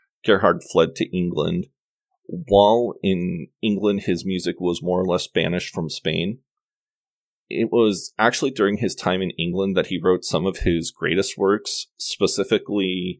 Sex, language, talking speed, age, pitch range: male, English, 150 wpm, 30-49, 90-115 Hz